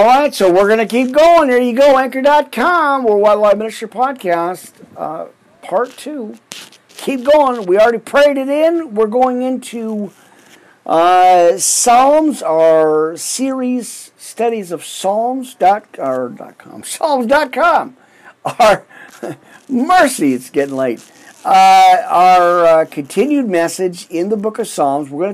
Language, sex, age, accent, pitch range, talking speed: English, male, 50-69, American, 155-255 Hz, 135 wpm